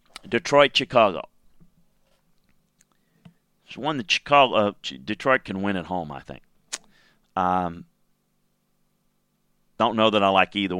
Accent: American